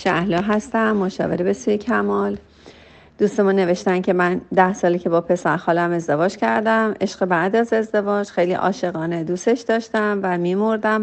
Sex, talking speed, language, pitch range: female, 150 wpm, Persian, 170-210 Hz